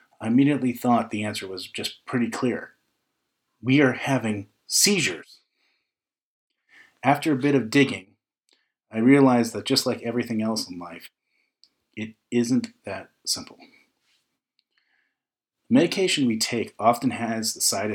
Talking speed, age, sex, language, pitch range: 125 wpm, 30-49, male, English, 105-130 Hz